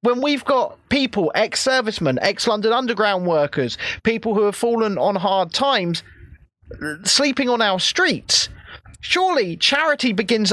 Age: 30-49